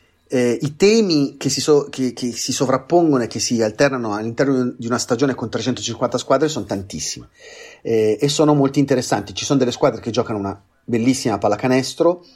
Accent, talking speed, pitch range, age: native, 180 wpm, 110-135 Hz, 30-49